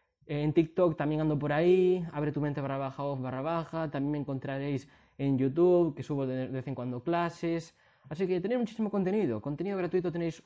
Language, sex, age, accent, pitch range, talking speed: Spanish, male, 20-39, Spanish, 130-155 Hz, 195 wpm